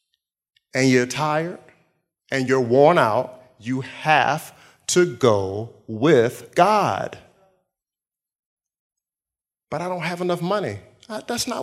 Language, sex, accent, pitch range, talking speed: English, male, American, 105-135 Hz, 110 wpm